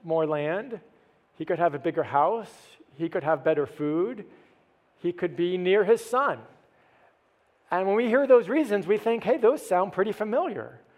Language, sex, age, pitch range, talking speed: English, male, 40-59, 150-215 Hz, 175 wpm